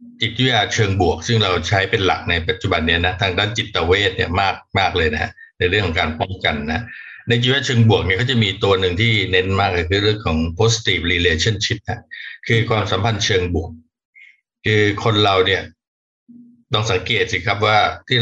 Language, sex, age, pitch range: Thai, male, 60-79, 95-115 Hz